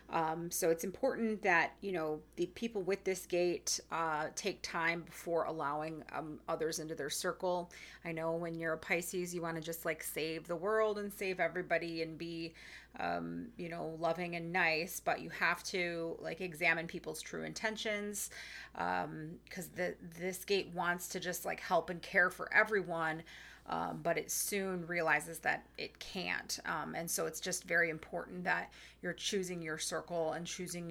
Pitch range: 160-185 Hz